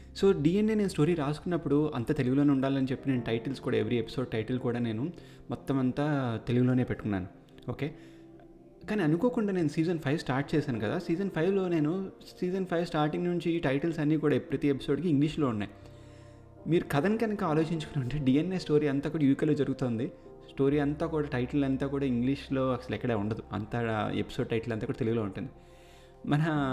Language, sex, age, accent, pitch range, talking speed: Telugu, male, 30-49, native, 115-150 Hz, 160 wpm